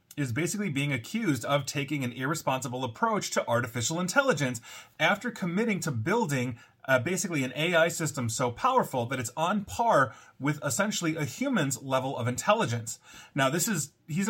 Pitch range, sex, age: 120-170 Hz, male, 30-49